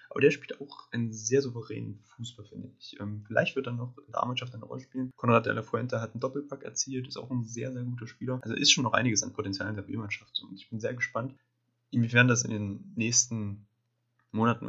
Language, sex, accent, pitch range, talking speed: German, male, German, 105-125 Hz, 230 wpm